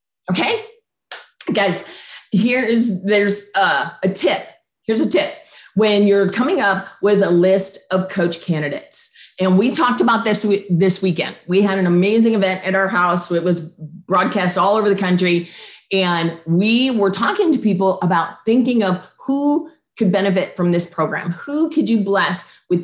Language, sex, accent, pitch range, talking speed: English, female, American, 180-235 Hz, 165 wpm